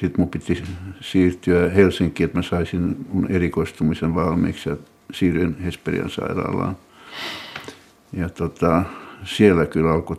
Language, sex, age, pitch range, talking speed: Finnish, male, 60-79, 85-95 Hz, 105 wpm